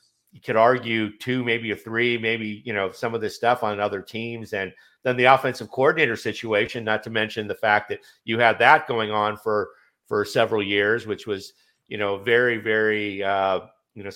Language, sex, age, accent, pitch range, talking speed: English, male, 50-69, American, 105-130 Hz, 200 wpm